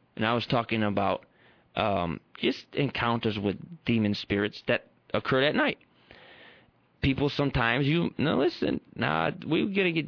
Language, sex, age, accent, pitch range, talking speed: English, male, 30-49, American, 115-160 Hz, 145 wpm